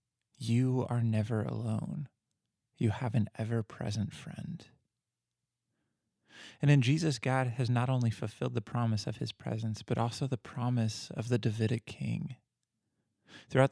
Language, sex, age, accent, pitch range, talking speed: English, male, 20-39, American, 110-130 Hz, 140 wpm